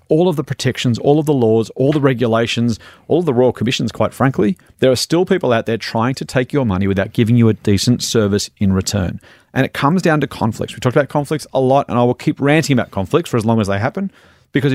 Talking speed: 250 wpm